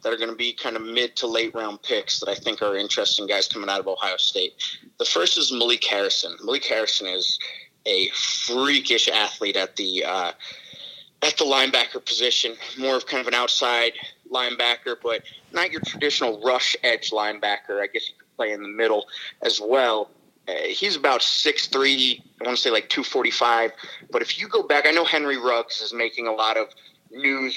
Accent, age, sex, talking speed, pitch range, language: American, 30-49, male, 195 wpm, 115-160 Hz, English